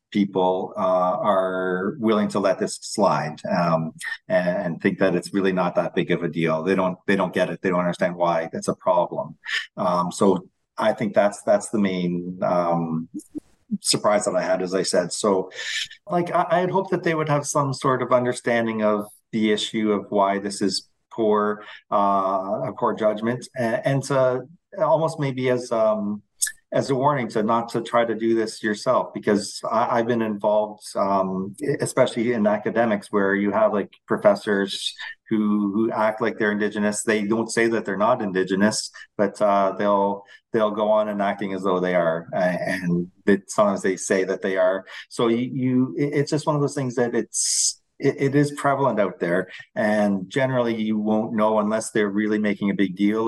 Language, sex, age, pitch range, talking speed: English, male, 40-59, 100-125 Hz, 190 wpm